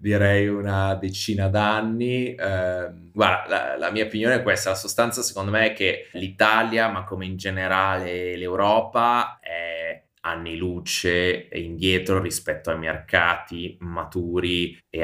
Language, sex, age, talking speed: Italian, male, 20-39, 130 wpm